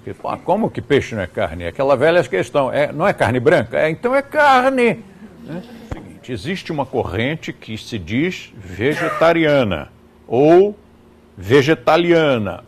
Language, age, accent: Portuguese, 60-79, Brazilian